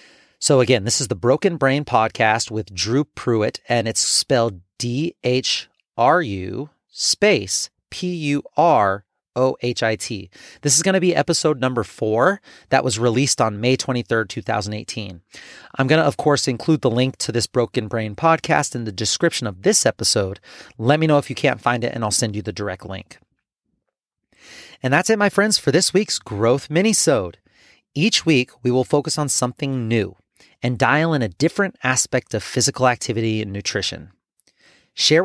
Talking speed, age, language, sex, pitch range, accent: 165 wpm, 30-49, English, male, 115-155 Hz, American